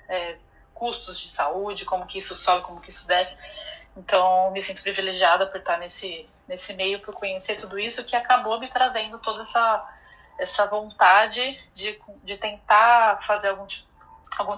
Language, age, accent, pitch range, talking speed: Portuguese, 30-49, Brazilian, 185-230 Hz, 150 wpm